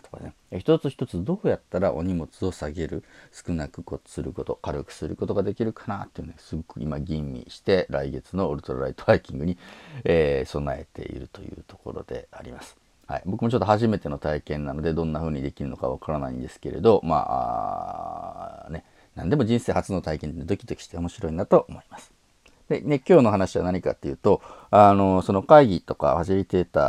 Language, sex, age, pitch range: Japanese, male, 40-59, 80-125 Hz